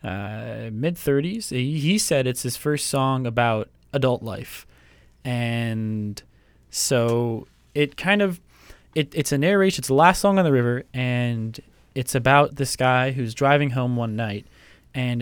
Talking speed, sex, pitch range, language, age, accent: 155 wpm, male, 115-140 Hz, English, 10-29, American